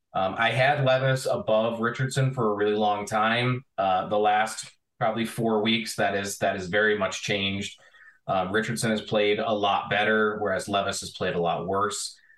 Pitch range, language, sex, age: 100-120 Hz, English, male, 30-49